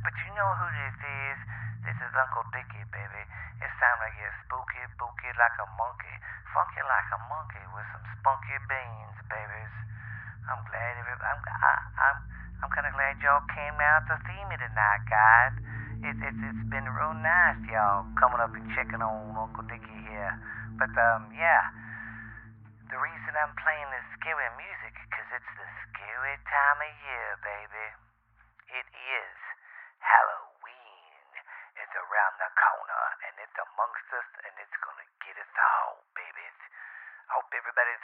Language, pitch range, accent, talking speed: English, 110-130 Hz, American, 155 wpm